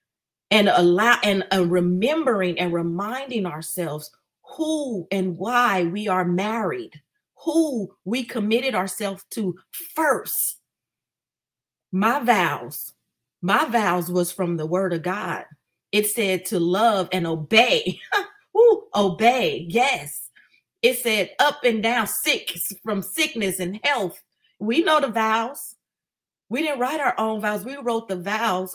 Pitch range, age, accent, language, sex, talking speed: 185-255 Hz, 40-59, American, English, female, 130 wpm